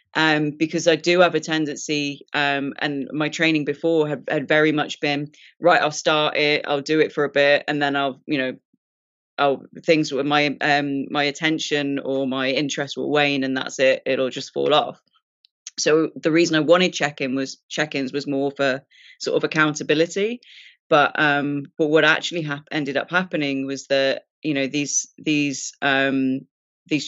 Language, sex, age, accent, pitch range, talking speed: English, female, 20-39, British, 140-160 Hz, 180 wpm